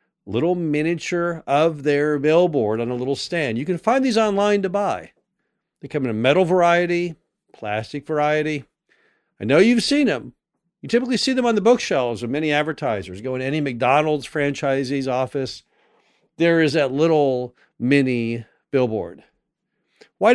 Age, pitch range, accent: 50-69, 140-195 Hz, American